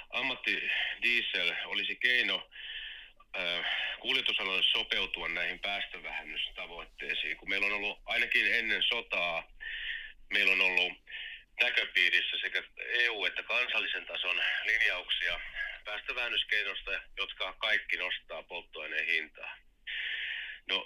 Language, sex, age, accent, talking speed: Finnish, male, 30-49, native, 95 wpm